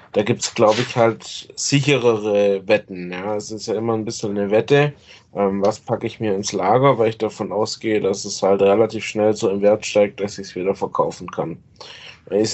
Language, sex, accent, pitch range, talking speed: German, male, German, 100-120 Hz, 210 wpm